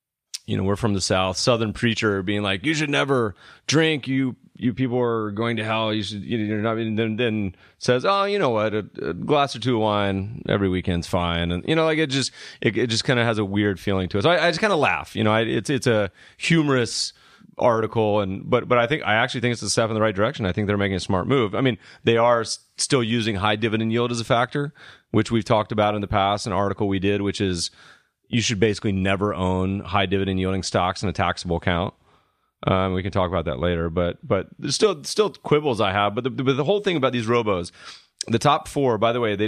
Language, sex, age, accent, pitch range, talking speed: English, male, 30-49, American, 95-120 Hz, 250 wpm